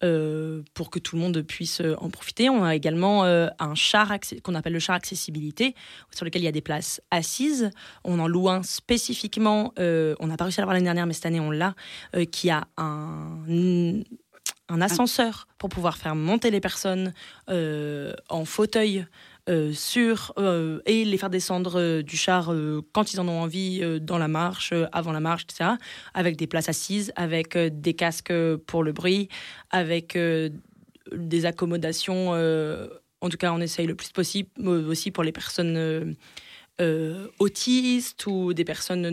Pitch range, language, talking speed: 160-190 Hz, French, 185 wpm